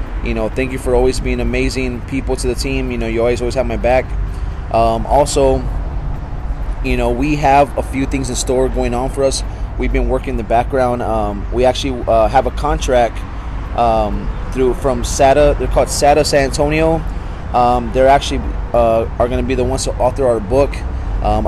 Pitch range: 105-130 Hz